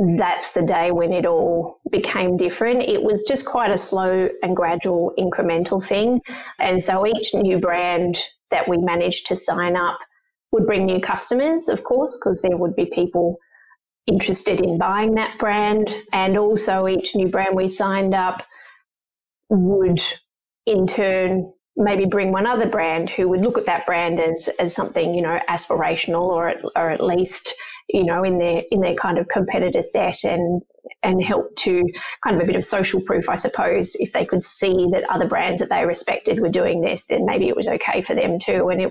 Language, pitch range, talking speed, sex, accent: English, 180-220 Hz, 190 wpm, female, Australian